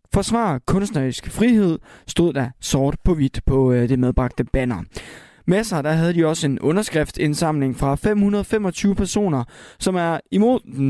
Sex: male